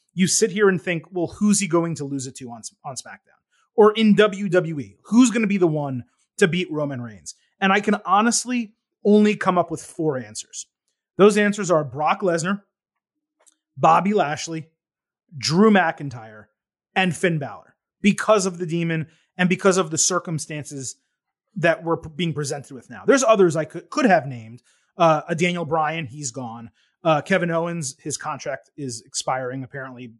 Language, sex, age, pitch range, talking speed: English, male, 30-49, 145-200 Hz, 175 wpm